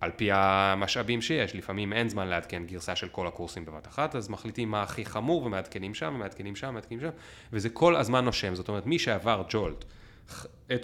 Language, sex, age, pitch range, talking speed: Hebrew, male, 30-49, 90-120 Hz, 195 wpm